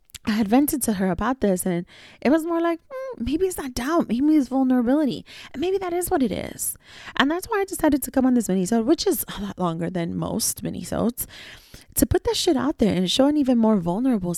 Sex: female